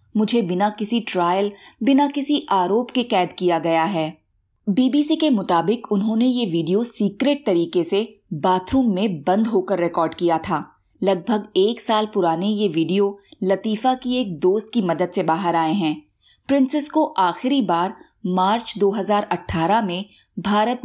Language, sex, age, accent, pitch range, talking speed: Hindi, female, 20-39, native, 175-230 Hz, 150 wpm